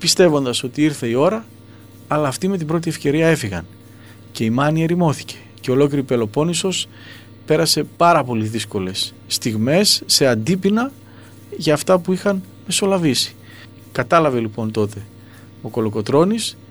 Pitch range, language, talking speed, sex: 115-170 Hz, Greek, 130 wpm, male